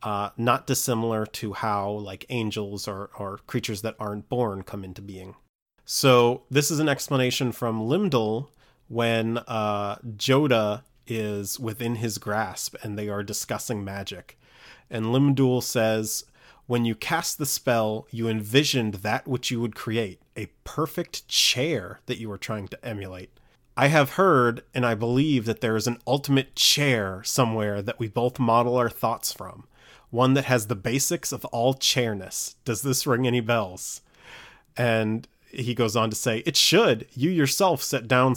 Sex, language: male, English